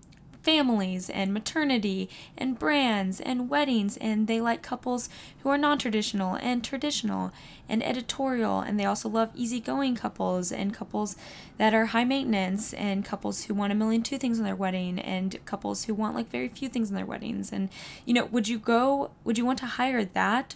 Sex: female